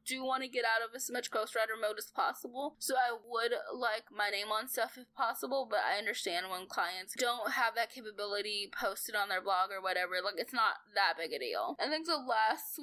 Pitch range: 210-285 Hz